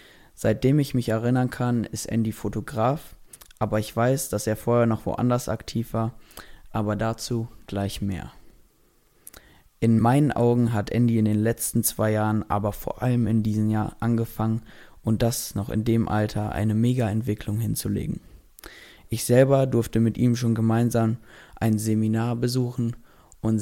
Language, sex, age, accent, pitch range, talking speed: German, male, 20-39, German, 110-120 Hz, 150 wpm